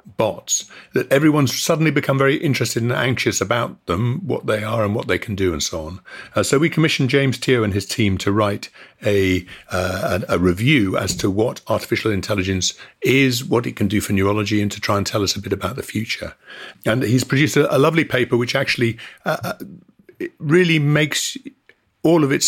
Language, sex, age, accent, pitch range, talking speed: English, male, 50-69, British, 95-140 Hz, 200 wpm